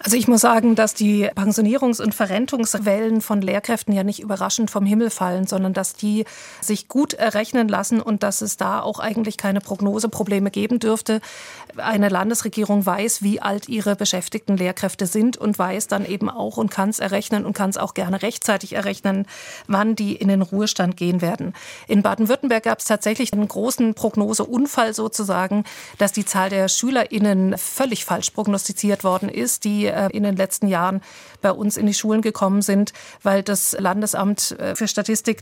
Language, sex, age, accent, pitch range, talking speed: German, female, 40-59, German, 200-225 Hz, 175 wpm